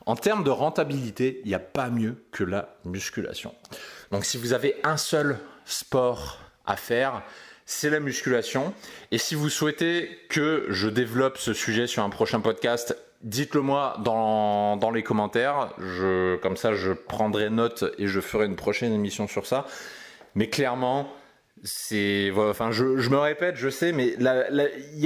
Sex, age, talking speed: male, 30-49, 165 wpm